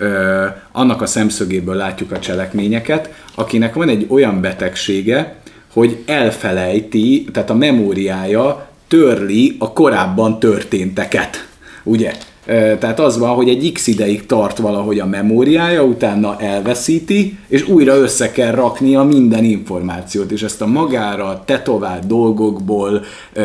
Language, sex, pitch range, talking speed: Hungarian, male, 100-130 Hz, 120 wpm